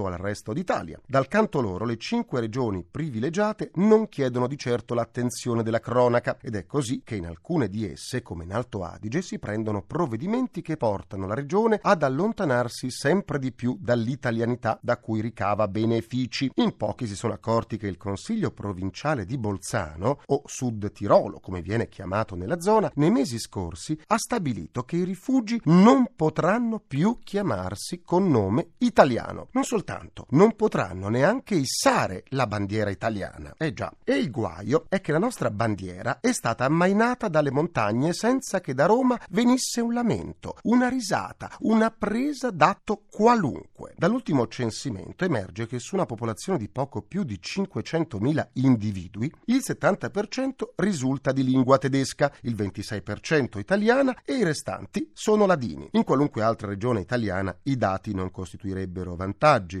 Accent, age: native, 40-59